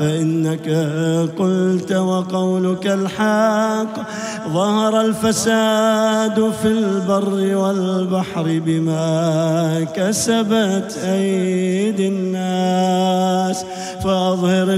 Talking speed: 55 wpm